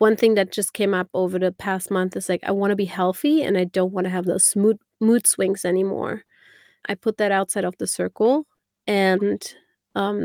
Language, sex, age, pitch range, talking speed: English, female, 30-49, 195-220 Hz, 210 wpm